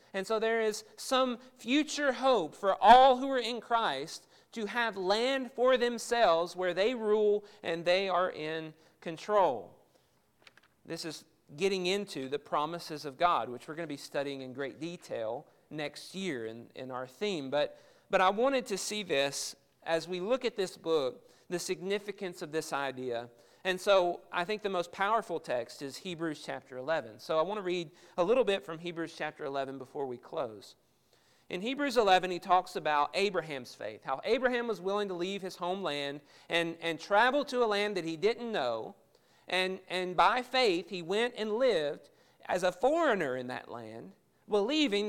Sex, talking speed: male, 180 wpm